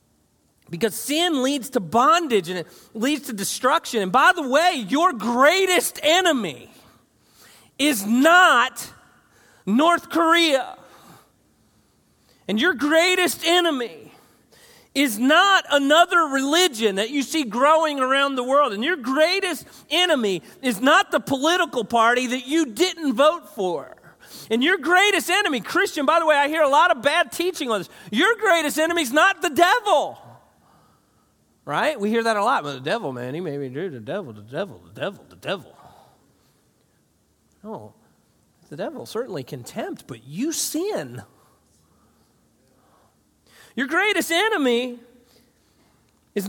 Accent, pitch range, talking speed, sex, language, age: American, 240-335 Hz, 140 wpm, male, English, 40-59